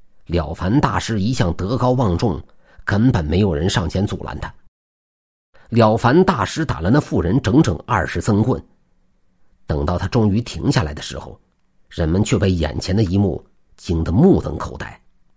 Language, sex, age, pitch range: Chinese, male, 50-69, 85-120 Hz